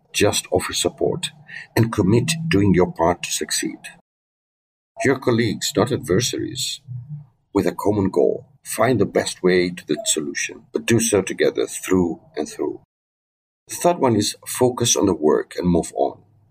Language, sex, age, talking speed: English, male, 50-69, 155 wpm